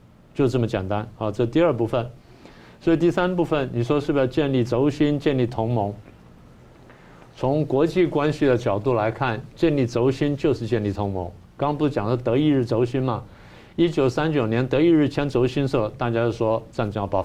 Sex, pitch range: male, 110-145 Hz